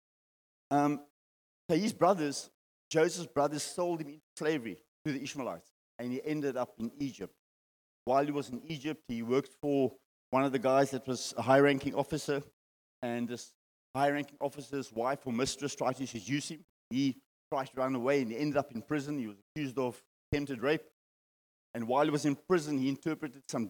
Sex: male